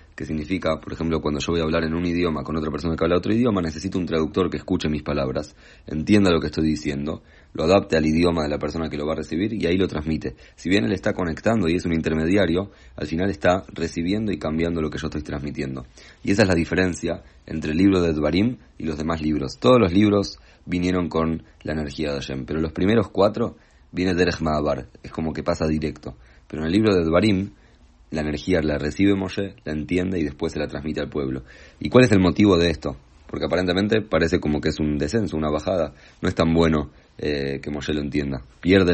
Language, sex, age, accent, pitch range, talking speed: English, male, 30-49, Argentinian, 75-90 Hz, 230 wpm